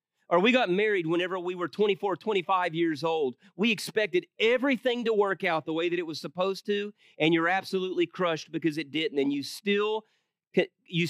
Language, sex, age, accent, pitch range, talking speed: English, male, 30-49, American, 160-200 Hz, 190 wpm